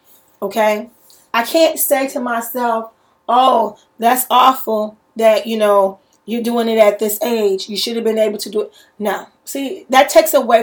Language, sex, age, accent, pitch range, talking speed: English, female, 30-49, American, 215-265 Hz, 175 wpm